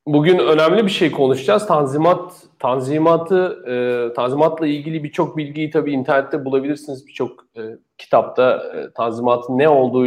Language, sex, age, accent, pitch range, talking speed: Turkish, male, 40-59, native, 130-170 Hz, 115 wpm